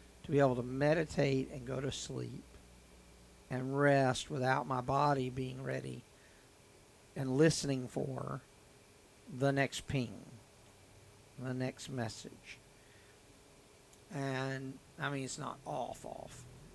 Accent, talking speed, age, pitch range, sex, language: American, 110 wpm, 50-69, 125-145 Hz, male, English